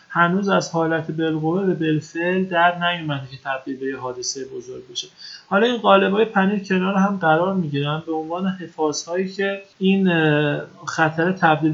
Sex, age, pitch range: male, 30-49, 150-185 Hz